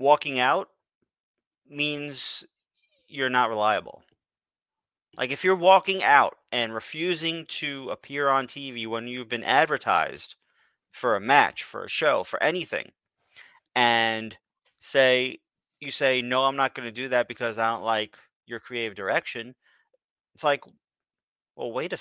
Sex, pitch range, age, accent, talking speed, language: male, 125-185 Hz, 30-49, American, 140 wpm, English